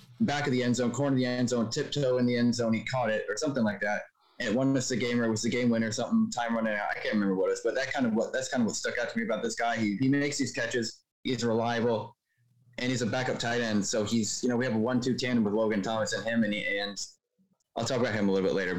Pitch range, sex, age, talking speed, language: 115-135 Hz, male, 20-39, 315 wpm, English